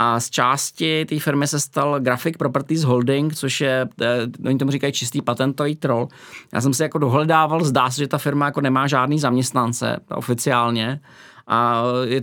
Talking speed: 170 wpm